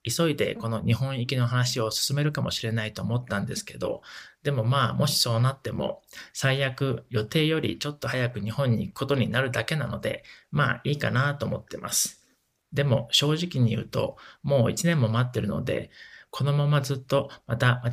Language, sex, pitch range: Japanese, male, 115-140 Hz